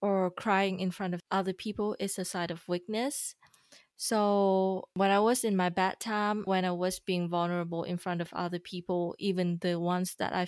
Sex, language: female, English